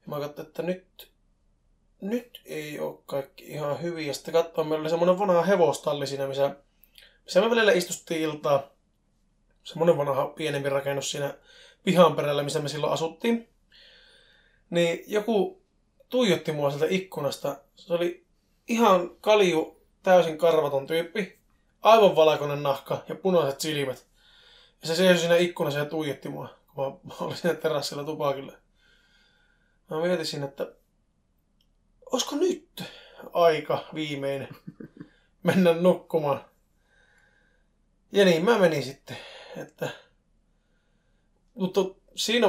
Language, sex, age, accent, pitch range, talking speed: Finnish, male, 20-39, native, 150-195 Hz, 125 wpm